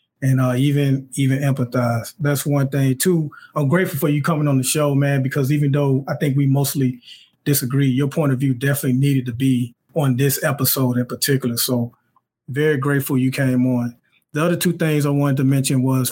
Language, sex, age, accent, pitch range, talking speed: English, male, 30-49, American, 130-150 Hz, 200 wpm